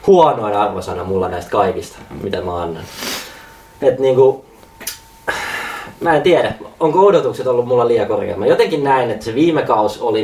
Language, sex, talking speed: Finnish, male, 165 wpm